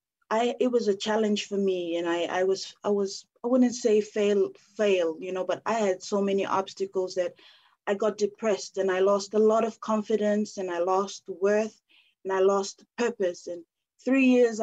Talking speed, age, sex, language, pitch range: 195 wpm, 30-49, female, English, 190-215 Hz